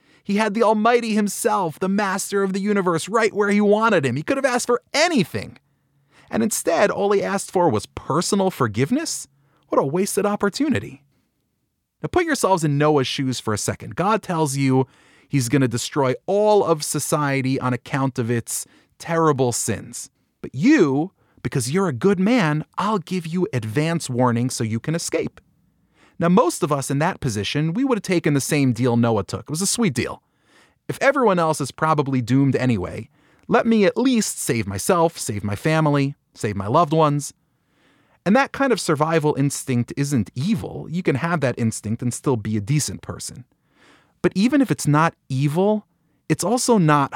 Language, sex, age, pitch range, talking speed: English, male, 30-49, 130-195 Hz, 185 wpm